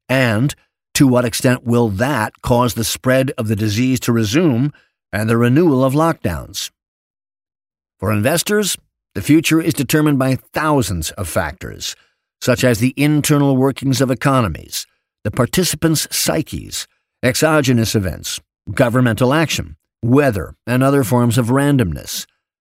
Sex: male